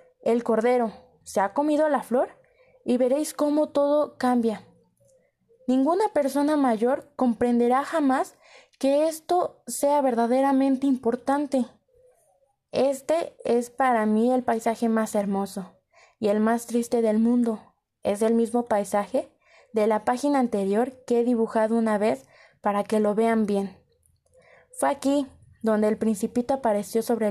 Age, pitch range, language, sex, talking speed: 20-39, 220-275 Hz, Spanish, female, 135 wpm